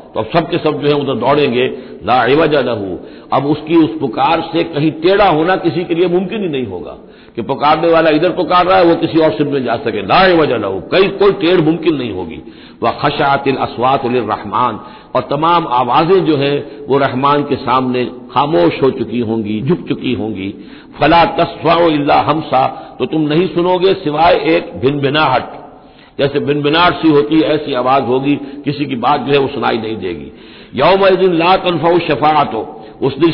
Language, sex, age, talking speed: Hindi, male, 60-79, 185 wpm